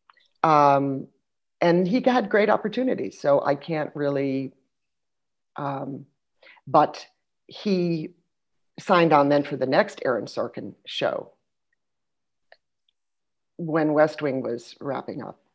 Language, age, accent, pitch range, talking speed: English, 50-69, American, 140-180 Hz, 110 wpm